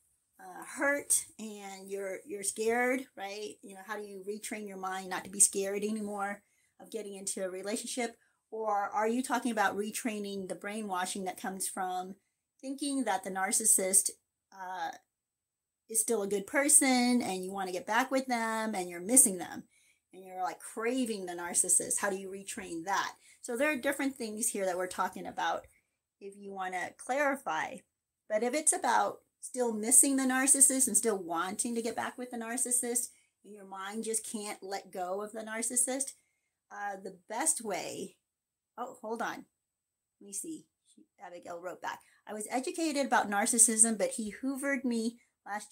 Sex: female